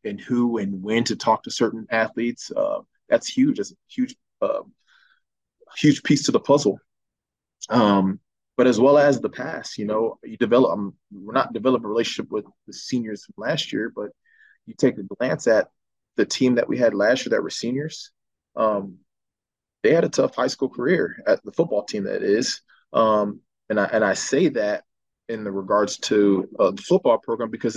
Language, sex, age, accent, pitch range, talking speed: English, male, 20-39, American, 110-140 Hz, 195 wpm